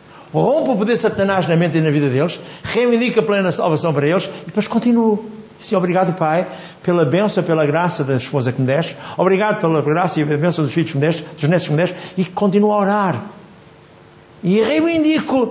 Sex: male